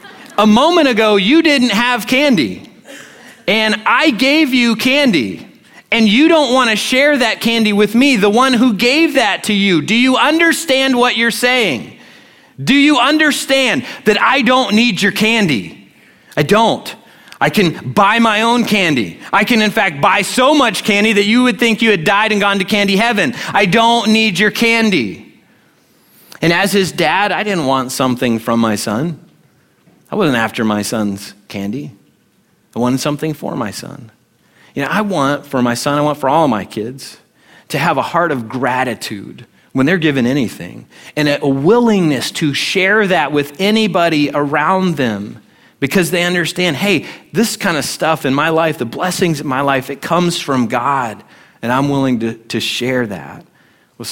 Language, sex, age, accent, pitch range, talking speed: English, male, 30-49, American, 140-235 Hz, 180 wpm